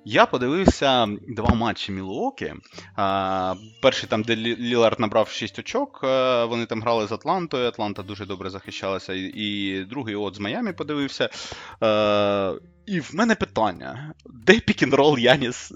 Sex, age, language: male, 20-39, Ukrainian